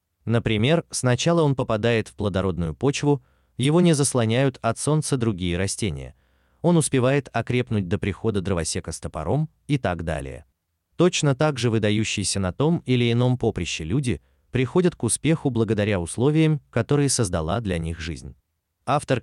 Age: 30-49